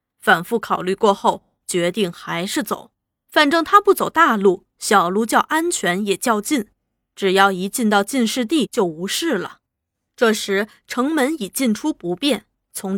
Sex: female